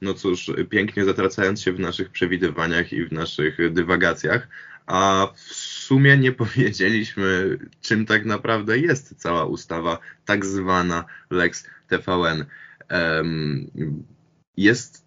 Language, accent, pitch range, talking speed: Polish, native, 90-110 Hz, 110 wpm